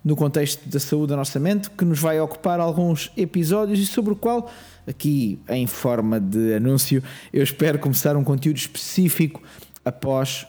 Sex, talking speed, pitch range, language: male, 165 wpm, 140-195 Hz, Portuguese